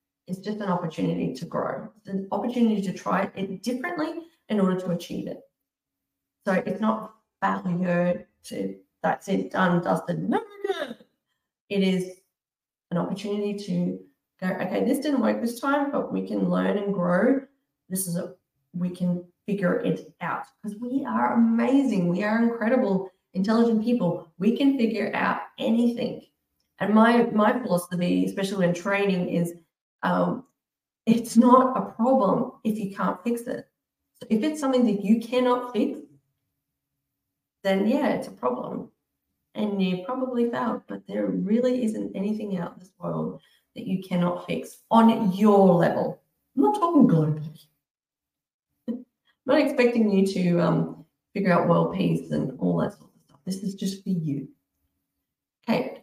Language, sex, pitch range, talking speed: English, female, 180-240 Hz, 155 wpm